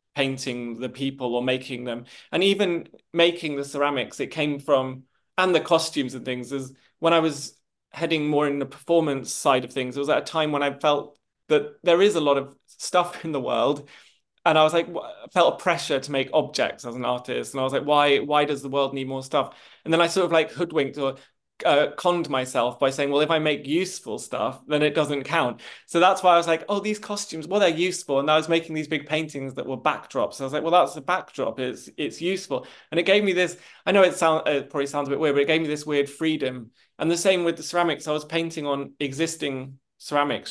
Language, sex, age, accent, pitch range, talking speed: English, male, 20-39, British, 135-165 Hz, 245 wpm